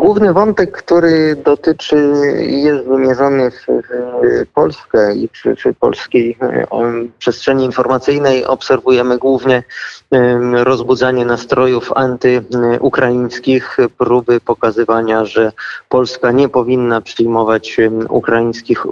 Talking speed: 85 wpm